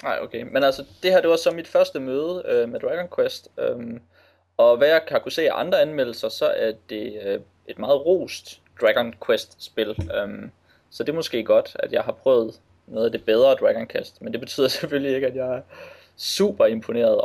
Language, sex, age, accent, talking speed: Danish, male, 20-39, native, 210 wpm